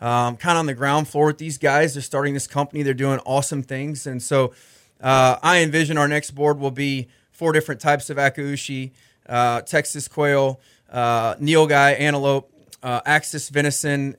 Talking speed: 180 wpm